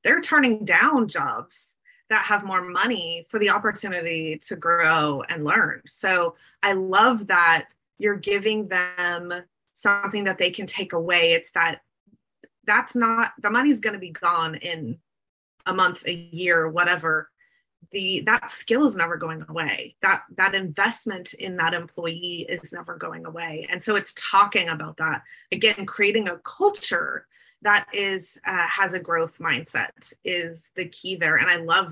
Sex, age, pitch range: female, 20-39, 170-210 Hz